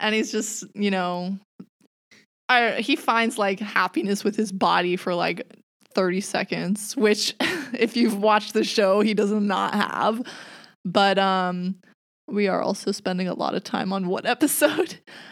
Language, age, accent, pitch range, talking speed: English, 20-39, American, 190-230 Hz, 155 wpm